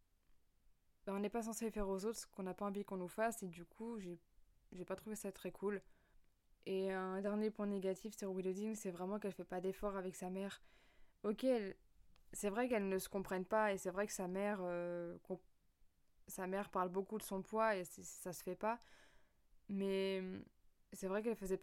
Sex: female